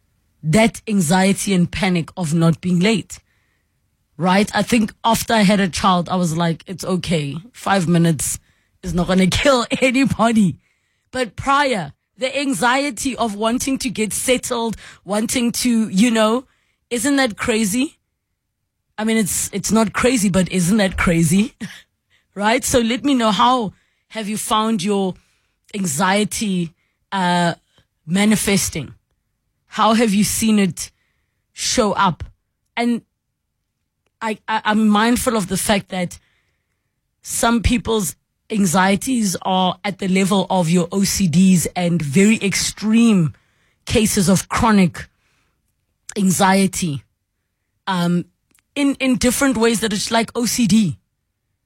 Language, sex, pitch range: English, female, 175-225 Hz